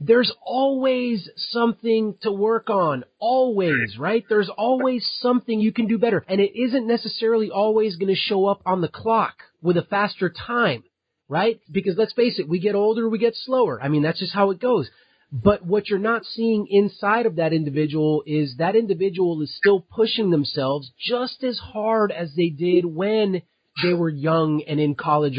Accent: American